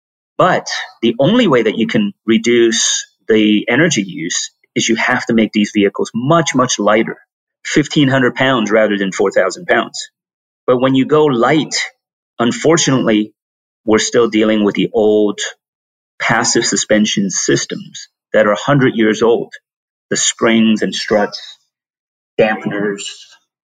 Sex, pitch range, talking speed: male, 105-125 Hz, 130 wpm